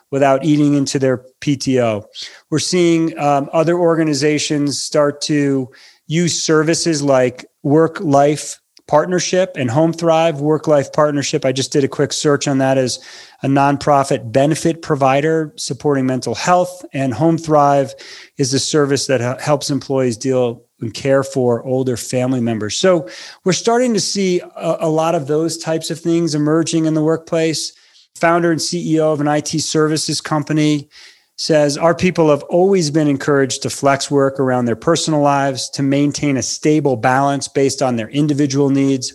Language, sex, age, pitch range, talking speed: English, male, 40-59, 135-160 Hz, 160 wpm